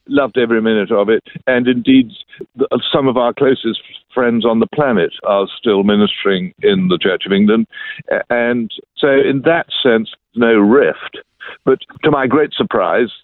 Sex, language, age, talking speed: male, English, 60-79, 160 wpm